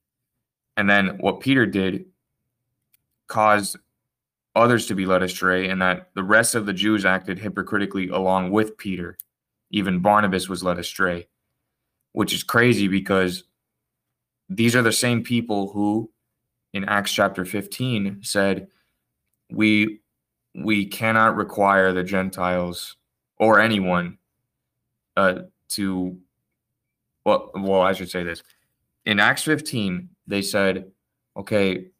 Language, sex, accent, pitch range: English, male, American, 90-110 Hz